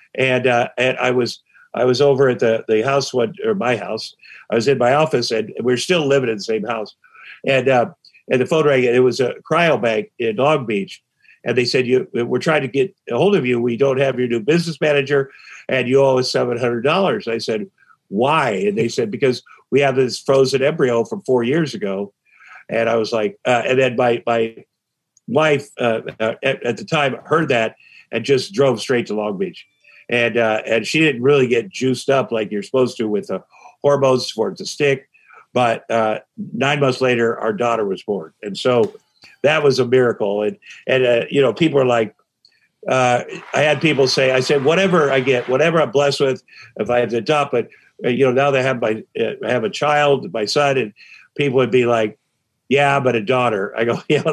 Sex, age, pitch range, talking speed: male, 50-69, 120-145 Hz, 220 wpm